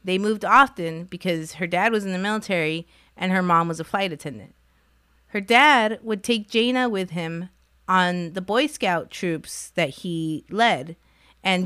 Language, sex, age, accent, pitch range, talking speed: English, female, 30-49, American, 155-200 Hz, 170 wpm